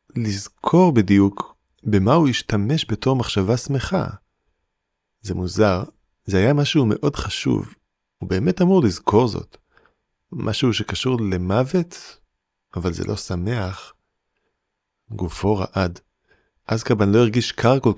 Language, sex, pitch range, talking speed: Hebrew, male, 95-115 Hz, 115 wpm